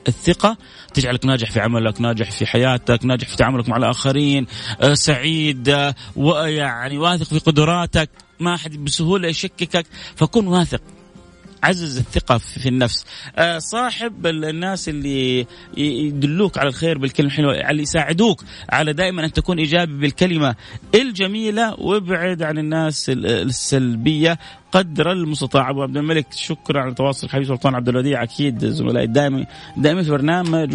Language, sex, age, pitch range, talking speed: Arabic, male, 30-49, 125-160 Hz, 135 wpm